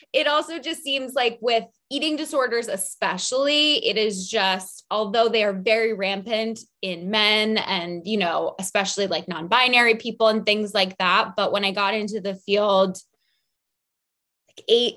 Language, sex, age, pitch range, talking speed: English, female, 20-39, 190-250 Hz, 150 wpm